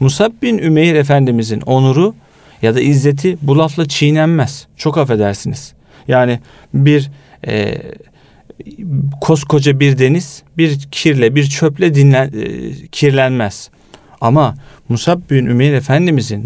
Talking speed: 115 wpm